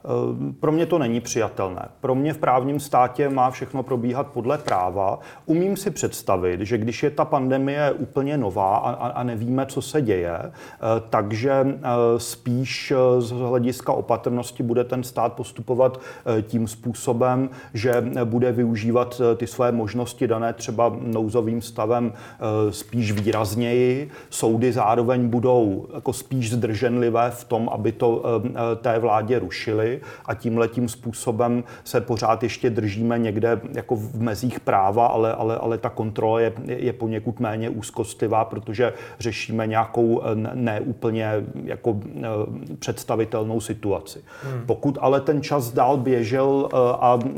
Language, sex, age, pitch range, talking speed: Czech, male, 30-49, 115-125 Hz, 130 wpm